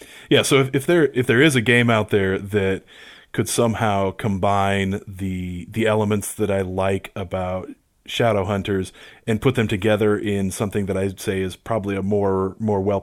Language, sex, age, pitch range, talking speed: English, male, 30-49, 95-110 Hz, 185 wpm